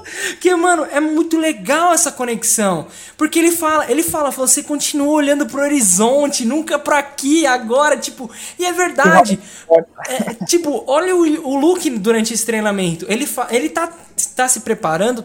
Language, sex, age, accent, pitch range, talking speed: Portuguese, male, 20-39, Brazilian, 185-275 Hz, 160 wpm